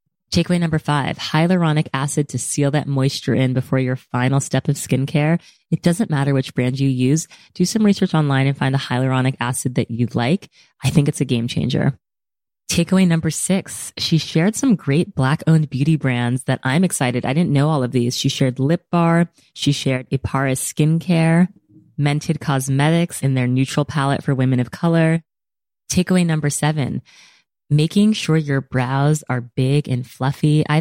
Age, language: 20-39, English